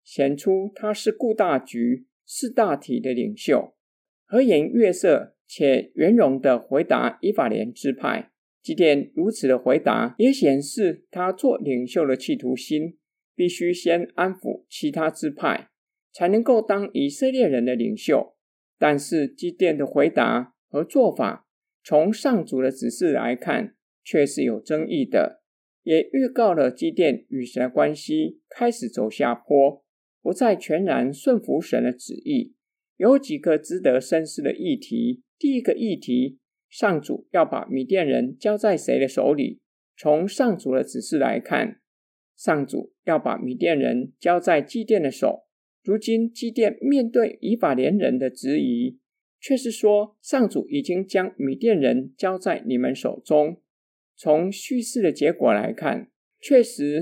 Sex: male